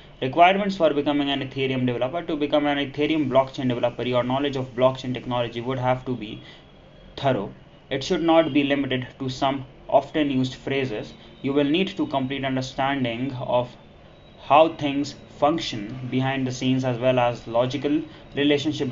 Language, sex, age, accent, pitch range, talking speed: English, male, 20-39, Indian, 130-145 Hz, 160 wpm